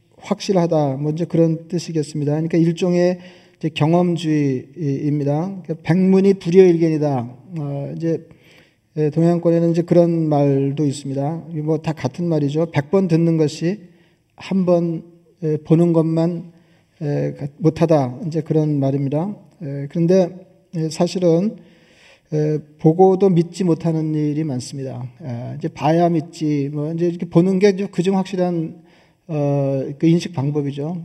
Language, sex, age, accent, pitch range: Korean, male, 40-59, native, 150-175 Hz